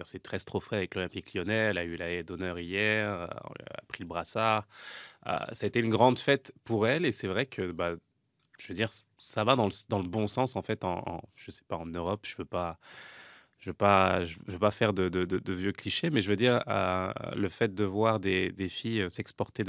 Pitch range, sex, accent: 90-110 Hz, male, French